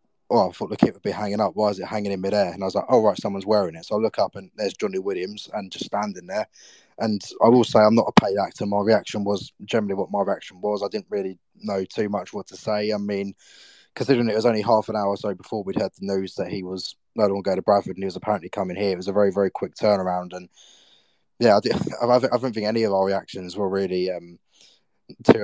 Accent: British